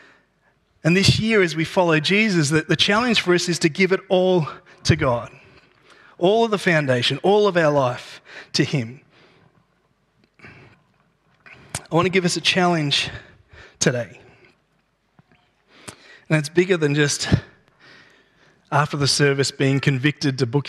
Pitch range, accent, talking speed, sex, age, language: 135-175 Hz, Australian, 140 wpm, male, 30-49, English